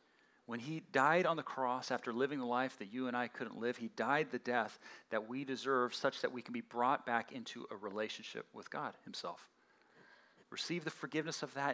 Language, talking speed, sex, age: English, 210 wpm, male, 40-59